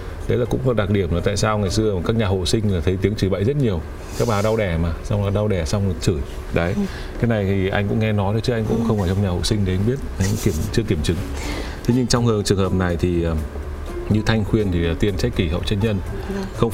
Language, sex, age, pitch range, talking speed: Vietnamese, male, 20-39, 90-110 Hz, 280 wpm